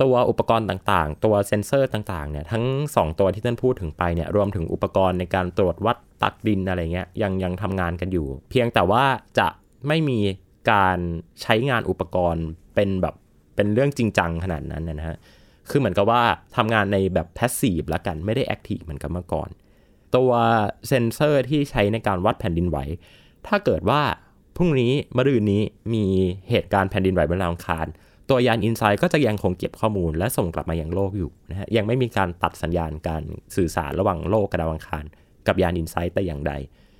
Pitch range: 85-110 Hz